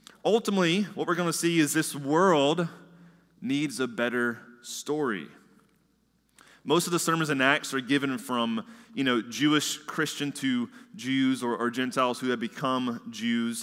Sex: male